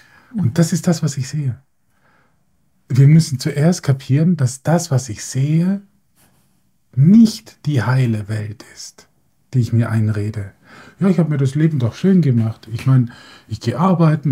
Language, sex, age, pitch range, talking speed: German, male, 50-69, 120-165 Hz, 165 wpm